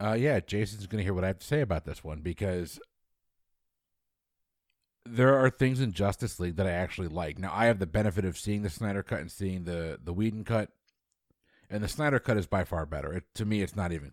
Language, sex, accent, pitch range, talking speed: English, male, American, 90-115 Hz, 230 wpm